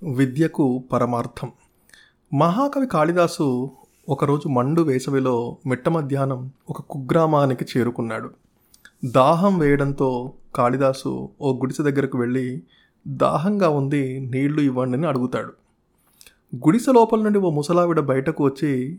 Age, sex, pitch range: 30-49, male, 130-170 Hz